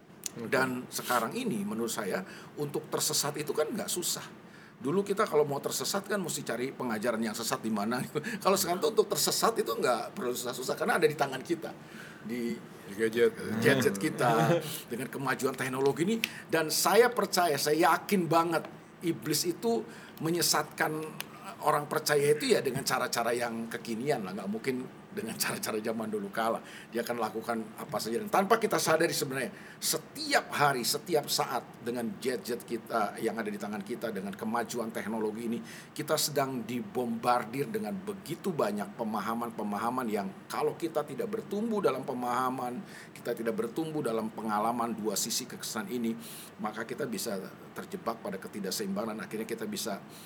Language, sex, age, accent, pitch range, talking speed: Indonesian, male, 50-69, native, 120-185 Hz, 155 wpm